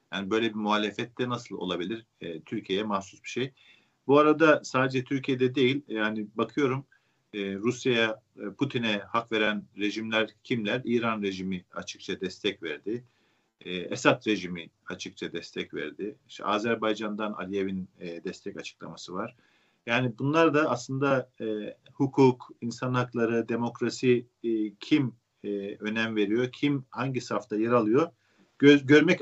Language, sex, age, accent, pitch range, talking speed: Turkish, male, 50-69, native, 105-130 Hz, 130 wpm